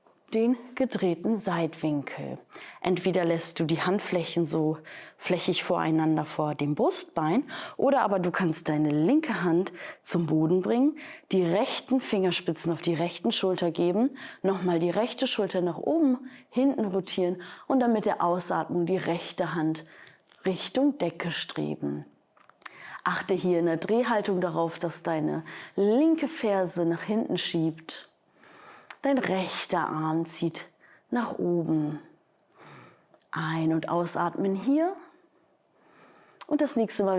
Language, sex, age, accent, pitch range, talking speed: German, female, 20-39, German, 165-235 Hz, 125 wpm